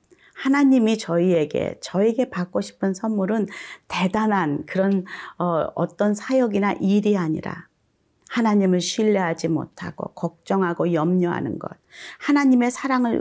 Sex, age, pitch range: female, 40-59, 170-215 Hz